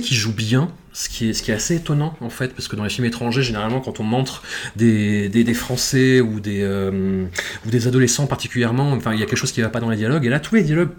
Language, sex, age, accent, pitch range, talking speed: French, male, 30-49, French, 110-145 Hz, 285 wpm